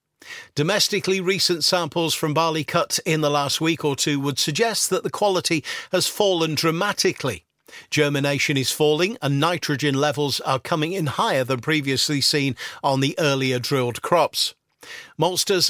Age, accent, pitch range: 50-69, British, 140-170 Hz